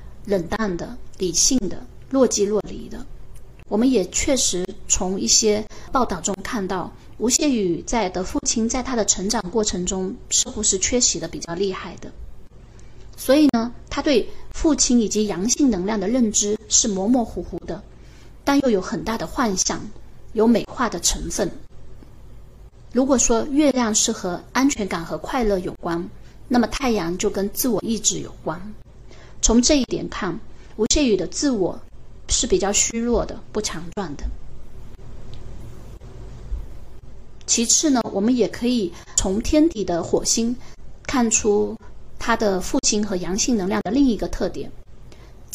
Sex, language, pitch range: female, Chinese, 180-245 Hz